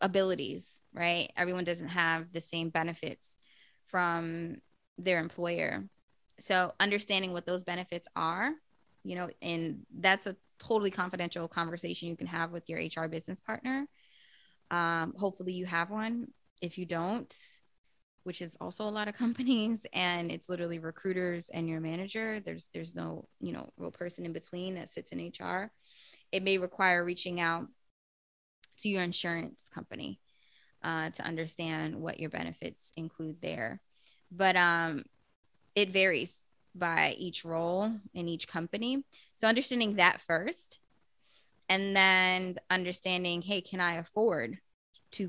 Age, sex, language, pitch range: 20-39, female, English, 170-195 Hz